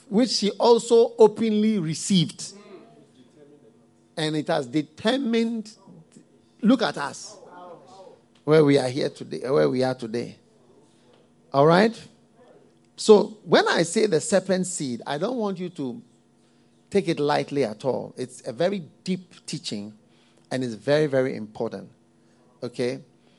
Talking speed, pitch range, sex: 130 wpm, 125-175 Hz, male